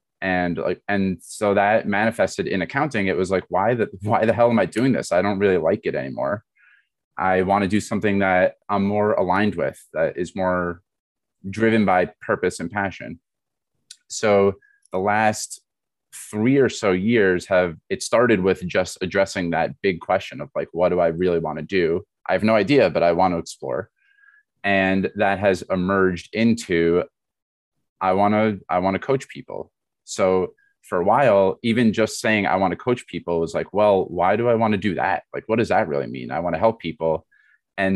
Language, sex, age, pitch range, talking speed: English, male, 20-39, 90-110 Hz, 200 wpm